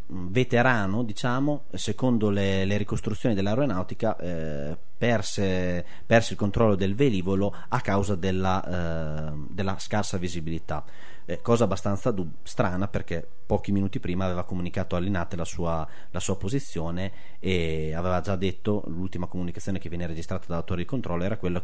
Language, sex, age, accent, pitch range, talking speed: Italian, male, 30-49, native, 85-105 Hz, 140 wpm